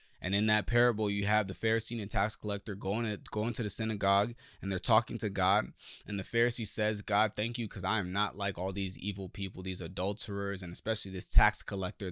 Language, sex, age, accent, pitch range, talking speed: English, male, 20-39, American, 95-110 Hz, 230 wpm